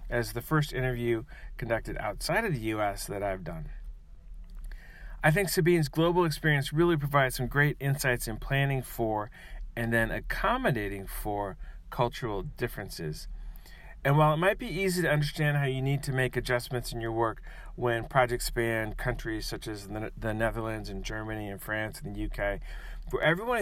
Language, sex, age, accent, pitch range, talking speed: English, male, 40-59, American, 110-150 Hz, 165 wpm